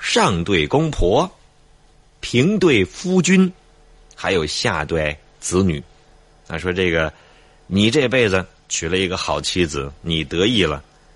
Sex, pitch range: male, 75-95 Hz